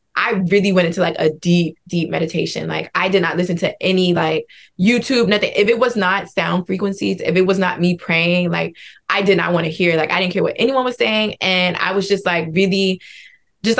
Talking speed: 230 wpm